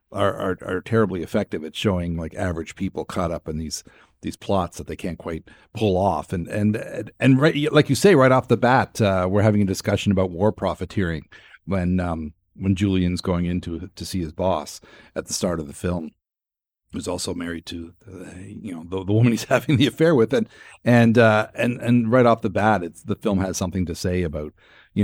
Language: English